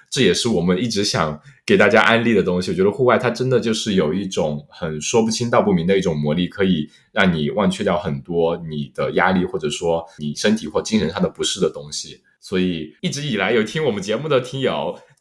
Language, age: Chinese, 20-39